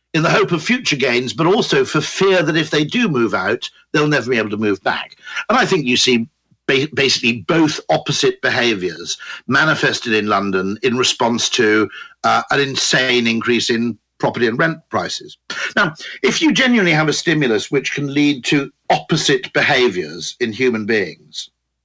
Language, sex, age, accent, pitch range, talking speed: English, male, 50-69, British, 110-175 Hz, 175 wpm